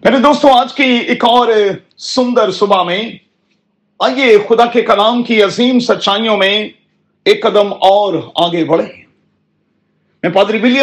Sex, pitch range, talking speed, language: male, 195-245 Hz, 115 wpm, Urdu